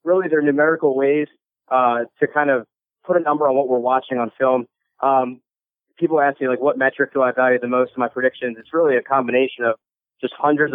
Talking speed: 220 wpm